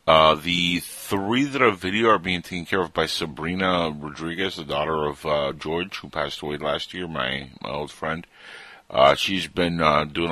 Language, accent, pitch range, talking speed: English, American, 75-90 Hz, 190 wpm